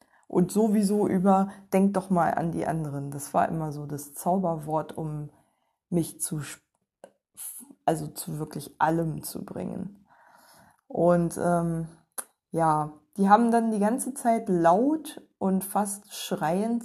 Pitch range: 170-210 Hz